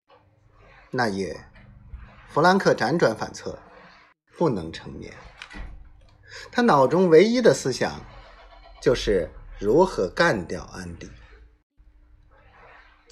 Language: Chinese